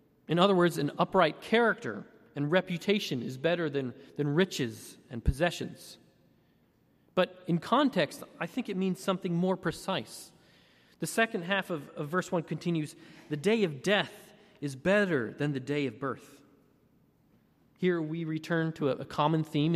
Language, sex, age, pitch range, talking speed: English, male, 30-49, 145-175 Hz, 160 wpm